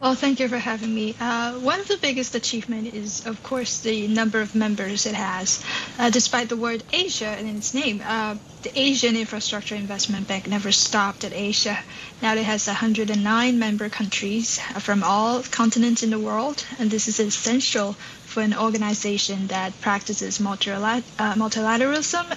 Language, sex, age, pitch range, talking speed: English, female, 10-29, 205-230 Hz, 170 wpm